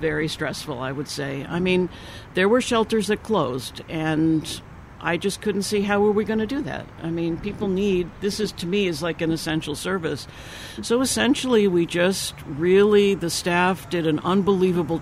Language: English